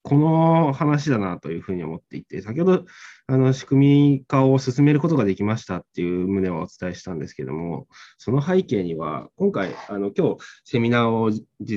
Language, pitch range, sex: Japanese, 95-135 Hz, male